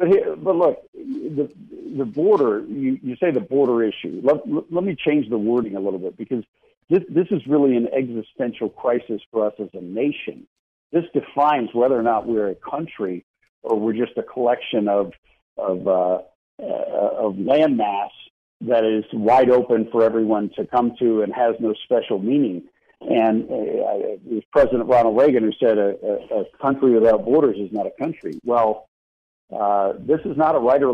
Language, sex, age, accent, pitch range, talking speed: English, male, 50-69, American, 110-140 Hz, 185 wpm